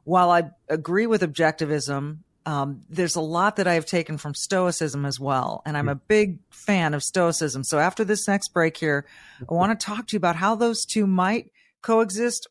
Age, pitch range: 40-59, 145-205 Hz